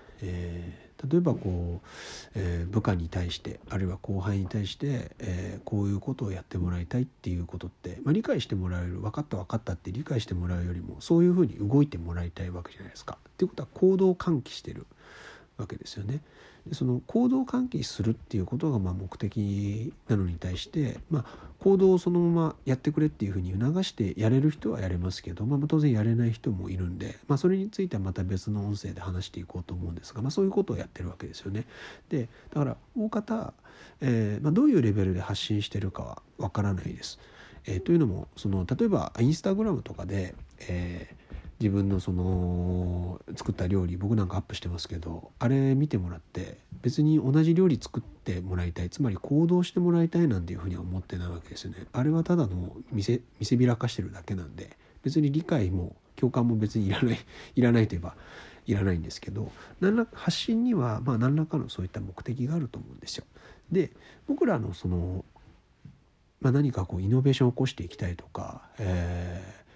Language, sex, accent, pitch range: Japanese, male, native, 90-135 Hz